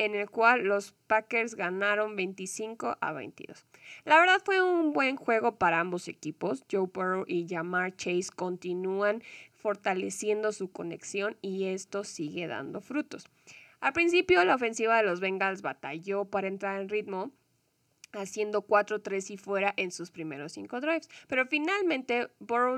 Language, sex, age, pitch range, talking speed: Spanish, female, 20-39, 185-230 Hz, 150 wpm